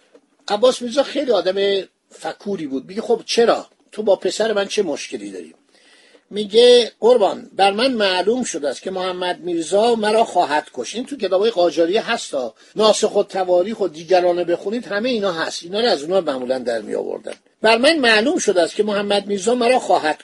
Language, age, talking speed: Persian, 50-69, 180 wpm